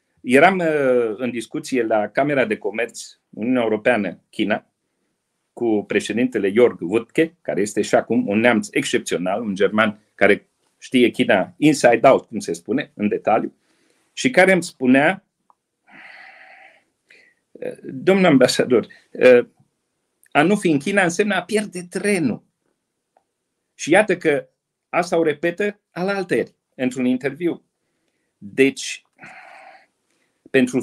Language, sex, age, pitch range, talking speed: Romanian, male, 40-59, 130-190 Hz, 115 wpm